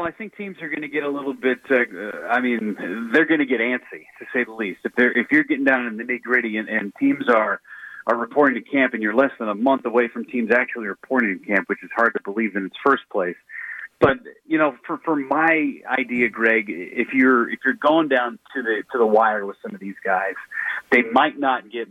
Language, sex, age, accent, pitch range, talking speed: English, male, 40-59, American, 110-145 Hz, 240 wpm